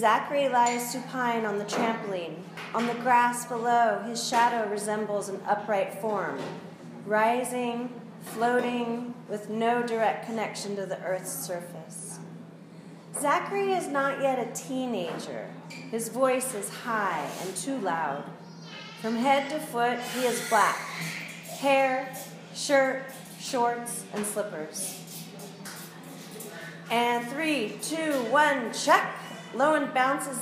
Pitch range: 200-255 Hz